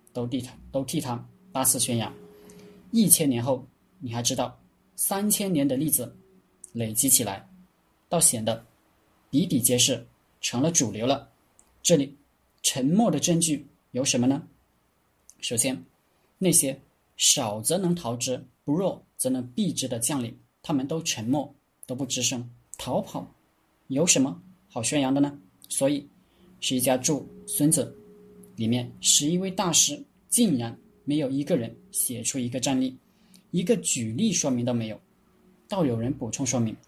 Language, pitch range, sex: Chinese, 125-175 Hz, male